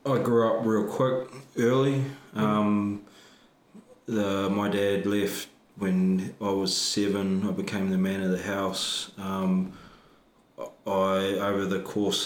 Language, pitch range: English, 95-105 Hz